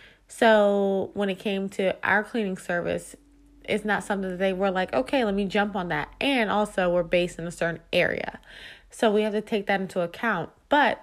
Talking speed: 205 wpm